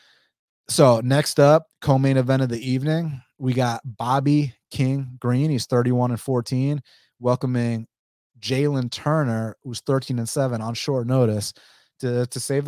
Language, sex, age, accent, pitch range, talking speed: English, male, 30-49, American, 120-145 Hz, 140 wpm